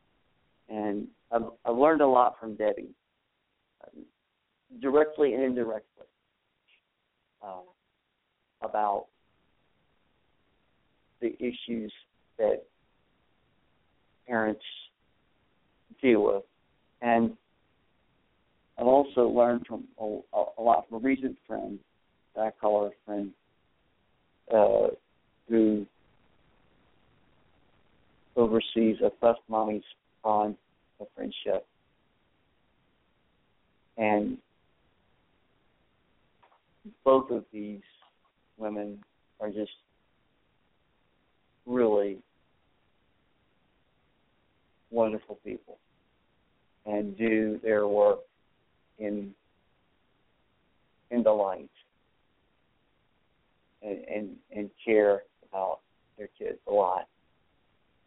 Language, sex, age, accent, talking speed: English, male, 50-69, American, 75 wpm